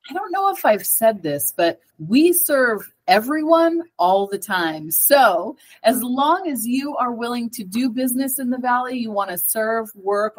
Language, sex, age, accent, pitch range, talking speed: English, female, 30-49, American, 195-270 Hz, 185 wpm